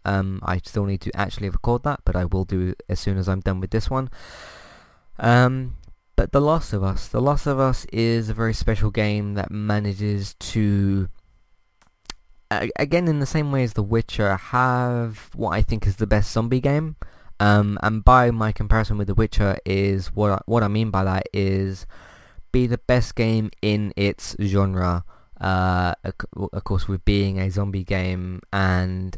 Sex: male